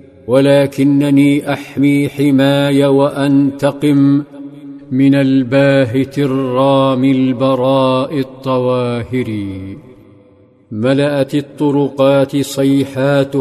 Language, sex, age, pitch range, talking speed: Arabic, male, 50-69, 130-140 Hz, 55 wpm